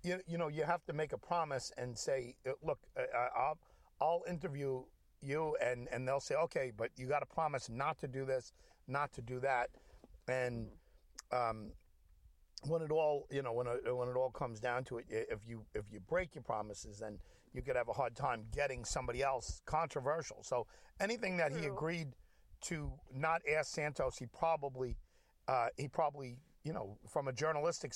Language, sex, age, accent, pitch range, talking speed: English, male, 50-69, American, 125-165 Hz, 190 wpm